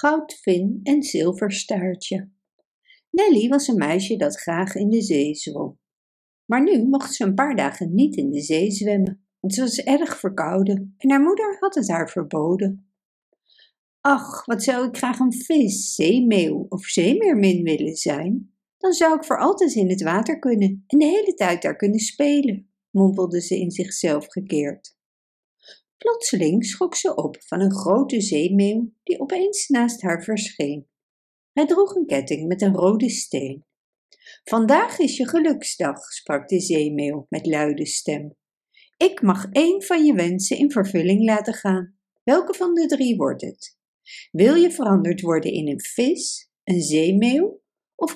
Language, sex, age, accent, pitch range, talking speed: Dutch, female, 60-79, Dutch, 185-295 Hz, 160 wpm